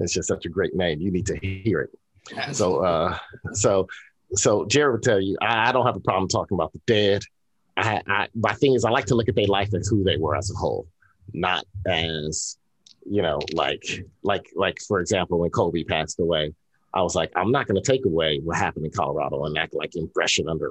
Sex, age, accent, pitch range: male, 30-49, American, 95-115 Hz